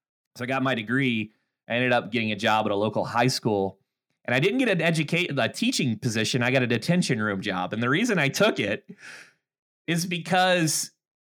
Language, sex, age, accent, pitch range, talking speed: English, male, 30-49, American, 100-130 Hz, 210 wpm